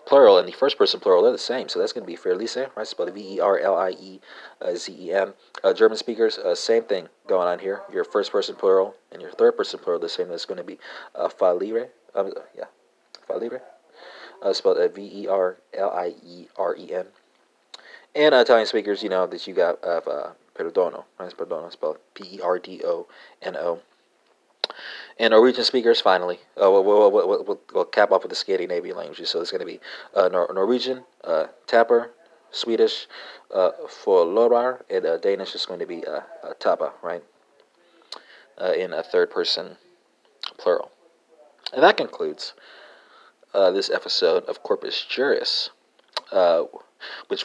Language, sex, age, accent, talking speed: English, male, 30-49, American, 185 wpm